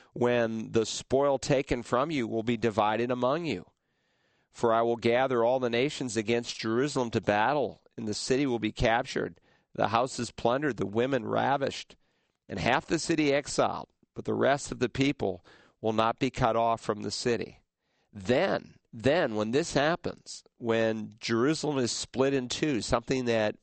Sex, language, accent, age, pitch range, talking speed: male, English, American, 50-69, 110-130 Hz, 170 wpm